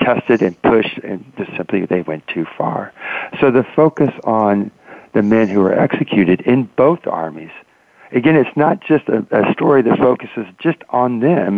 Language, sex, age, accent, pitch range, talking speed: English, male, 60-79, American, 105-135 Hz, 170 wpm